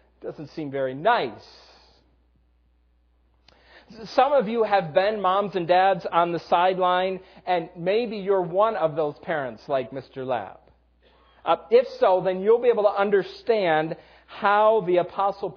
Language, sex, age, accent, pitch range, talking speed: English, male, 40-59, American, 155-200 Hz, 145 wpm